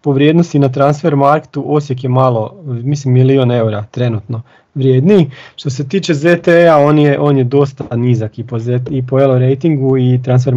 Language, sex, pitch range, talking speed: Croatian, male, 125-145 Hz, 180 wpm